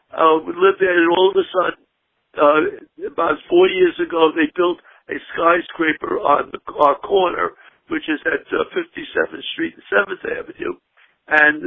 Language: English